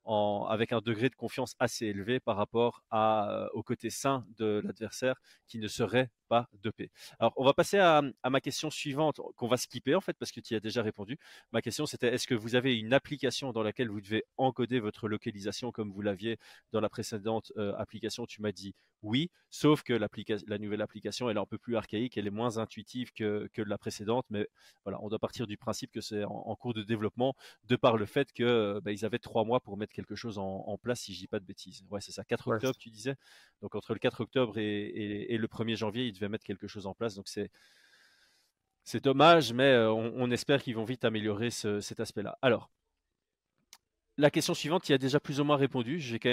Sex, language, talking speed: male, French, 235 wpm